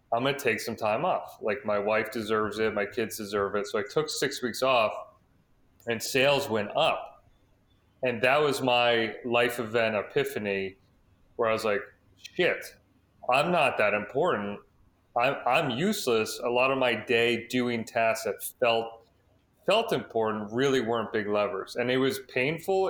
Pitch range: 105-130 Hz